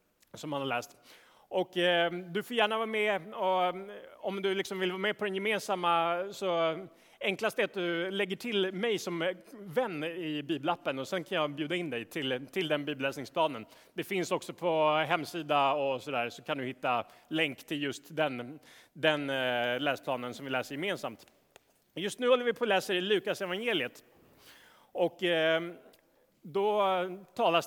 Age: 30-49